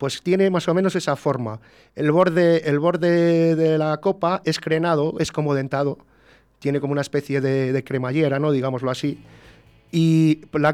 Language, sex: Spanish, male